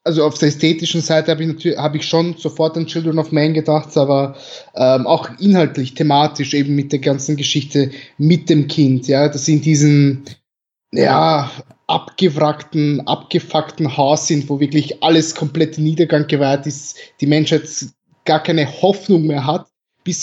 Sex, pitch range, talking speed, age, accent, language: male, 140-160 Hz, 165 wpm, 20-39, German, German